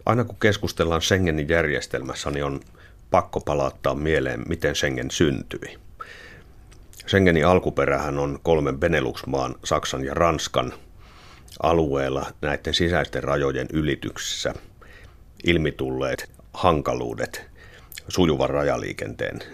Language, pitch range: Finnish, 70-90 Hz